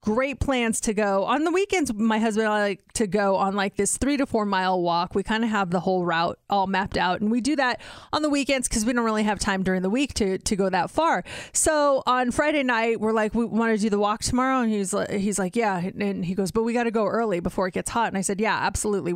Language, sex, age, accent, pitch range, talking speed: English, female, 30-49, American, 195-255 Hz, 280 wpm